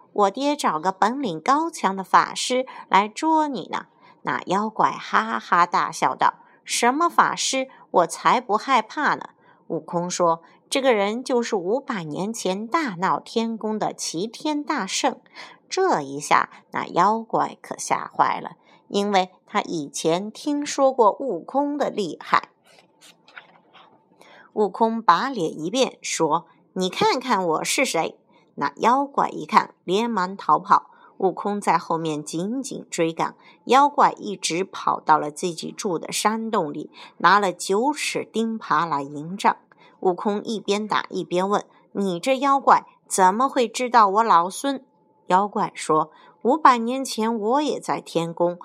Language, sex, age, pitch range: Chinese, female, 50-69, 180-255 Hz